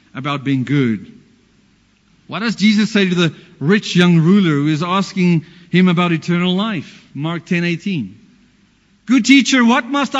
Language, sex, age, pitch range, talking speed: English, male, 40-59, 175-235 Hz, 145 wpm